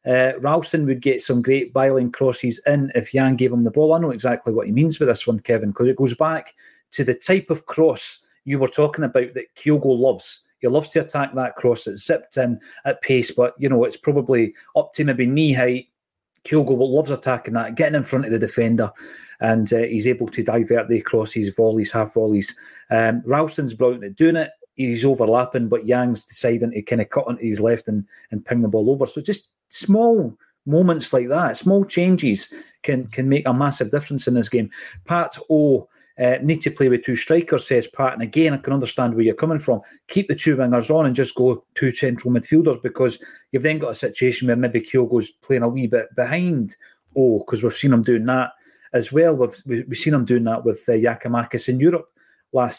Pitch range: 120-155 Hz